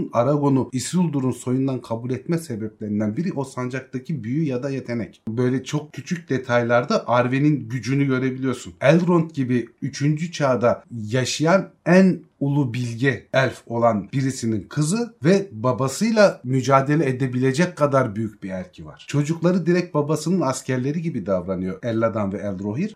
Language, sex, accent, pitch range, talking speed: Turkish, male, native, 120-145 Hz, 130 wpm